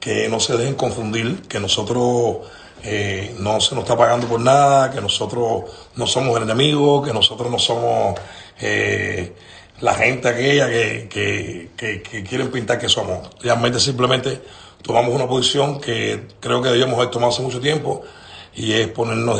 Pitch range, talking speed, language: 105-125 Hz, 165 wpm, Spanish